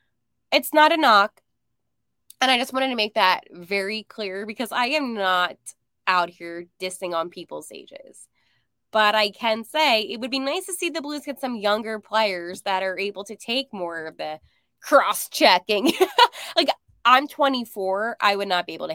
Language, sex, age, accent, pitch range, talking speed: English, female, 20-39, American, 185-270 Hz, 180 wpm